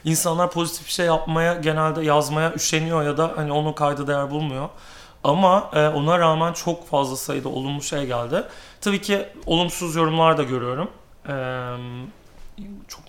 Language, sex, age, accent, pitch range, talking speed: Turkish, male, 40-59, native, 140-170 Hz, 150 wpm